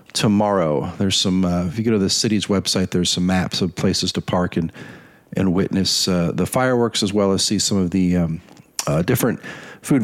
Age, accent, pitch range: 40-59, American, 95-110 Hz